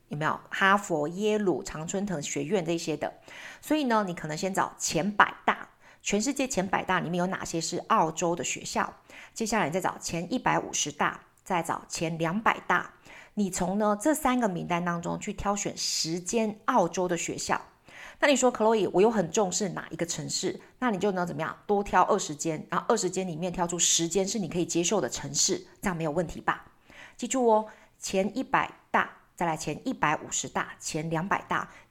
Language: Chinese